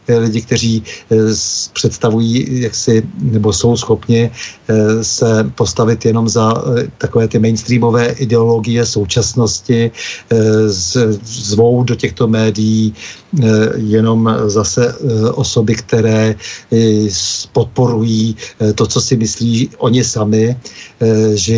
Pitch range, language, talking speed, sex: 110-125 Hz, Czech, 90 wpm, male